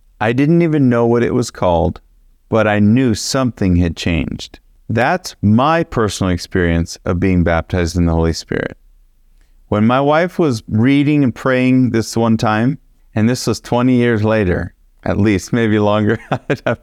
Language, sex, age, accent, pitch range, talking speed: English, male, 40-59, American, 90-130 Hz, 170 wpm